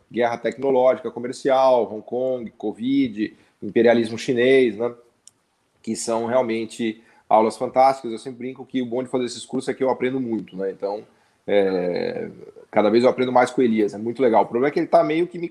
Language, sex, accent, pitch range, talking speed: Portuguese, male, Brazilian, 115-135 Hz, 200 wpm